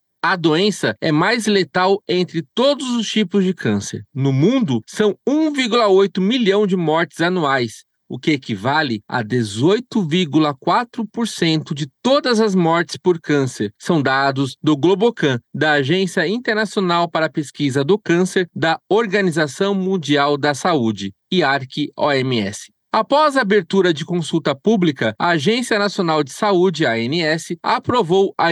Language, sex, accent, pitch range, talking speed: Portuguese, male, Brazilian, 150-200 Hz, 135 wpm